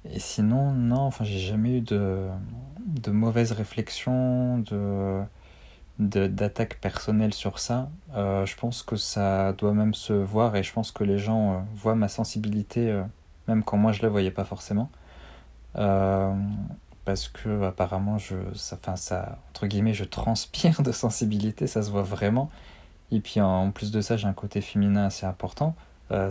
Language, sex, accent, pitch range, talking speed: French, male, French, 95-110 Hz, 175 wpm